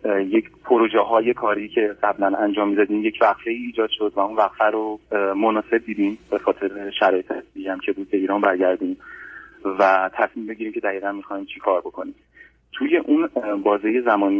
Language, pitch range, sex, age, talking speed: Persian, 100-115 Hz, male, 30-49, 170 wpm